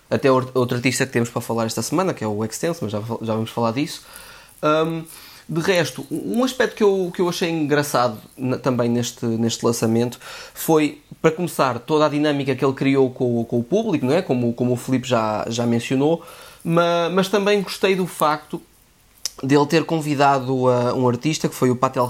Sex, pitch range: male, 125-155 Hz